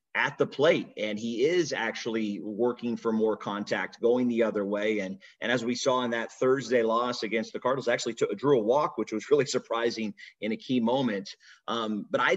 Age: 30-49